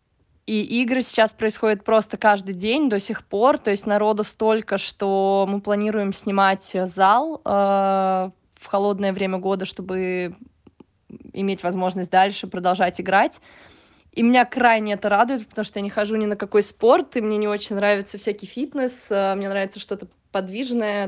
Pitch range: 190-220 Hz